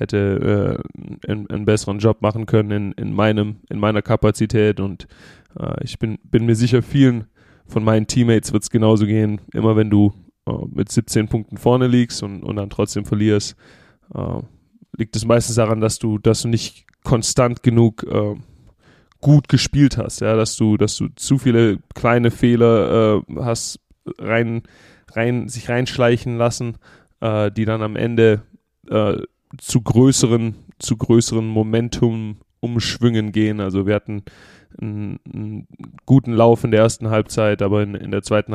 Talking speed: 160 wpm